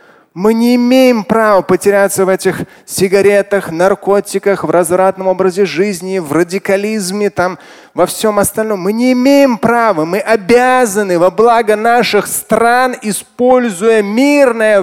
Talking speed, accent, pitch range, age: 120 wpm, native, 200-270 Hz, 30-49